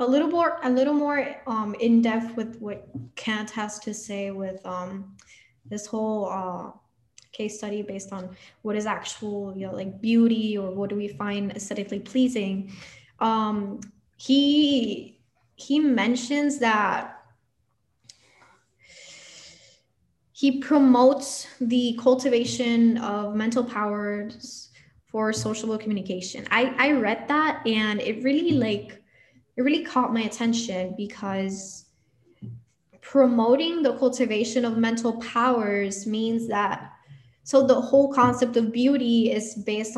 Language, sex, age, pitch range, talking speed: English, female, 10-29, 200-245 Hz, 125 wpm